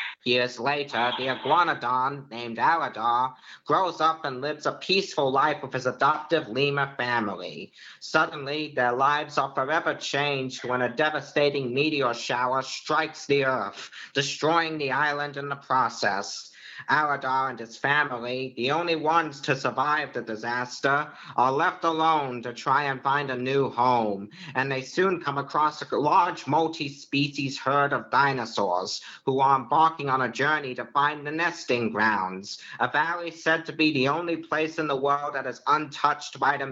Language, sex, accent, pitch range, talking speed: English, male, American, 130-150 Hz, 160 wpm